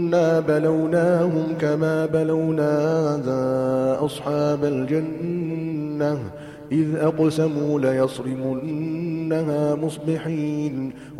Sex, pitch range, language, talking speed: male, 150-165 Hz, Arabic, 55 wpm